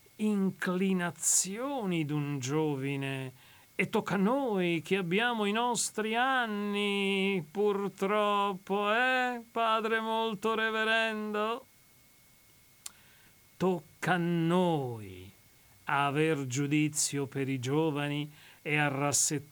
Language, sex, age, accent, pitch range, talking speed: Italian, male, 40-59, native, 150-220 Hz, 80 wpm